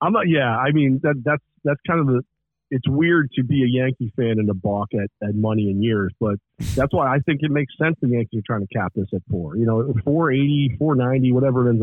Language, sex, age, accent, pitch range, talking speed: English, male, 40-59, American, 110-140 Hz, 260 wpm